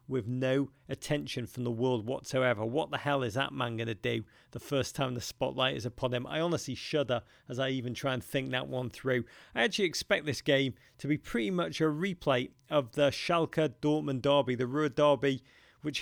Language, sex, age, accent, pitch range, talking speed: English, male, 40-59, British, 125-155 Hz, 210 wpm